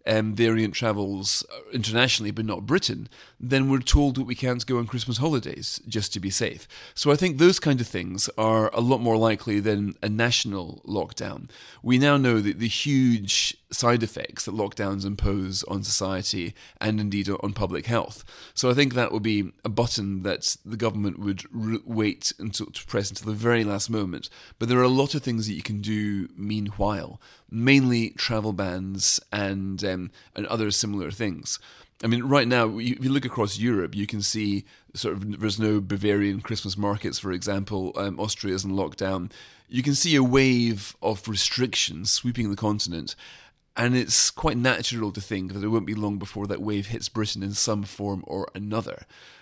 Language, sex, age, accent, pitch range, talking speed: English, male, 30-49, British, 100-120 Hz, 185 wpm